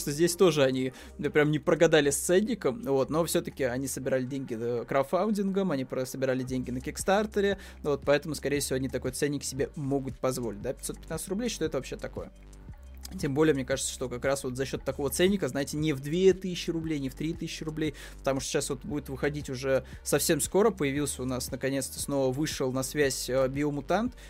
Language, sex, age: Russian, male, 20-39